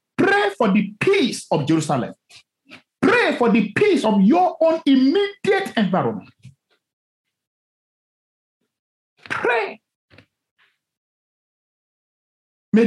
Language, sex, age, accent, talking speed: English, male, 50-69, Nigerian, 80 wpm